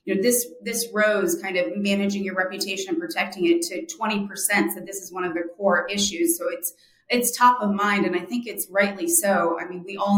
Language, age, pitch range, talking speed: English, 30-49, 185-240 Hz, 235 wpm